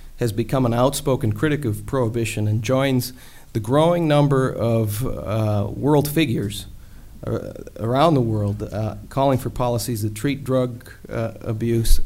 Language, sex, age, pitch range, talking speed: English, male, 40-59, 110-130 Hz, 145 wpm